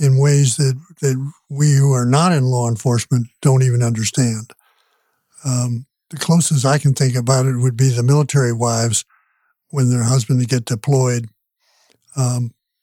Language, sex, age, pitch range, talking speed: English, male, 60-79, 130-155 Hz, 155 wpm